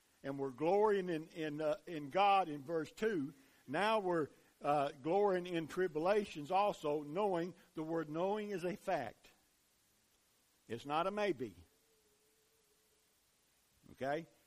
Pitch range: 145-185 Hz